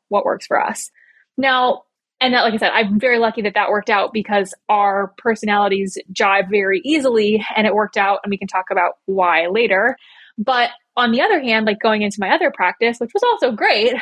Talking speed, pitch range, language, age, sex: 210 wpm, 200-240 Hz, English, 20-39, female